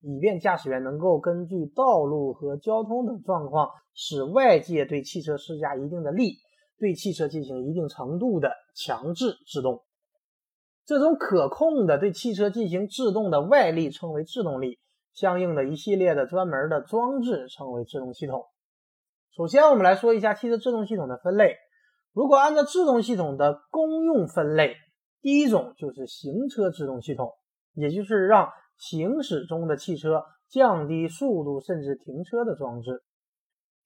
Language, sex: Chinese, male